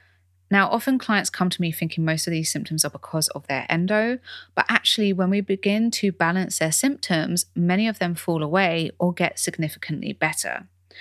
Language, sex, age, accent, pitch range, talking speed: English, female, 20-39, British, 150-195 Hz, 185 wpm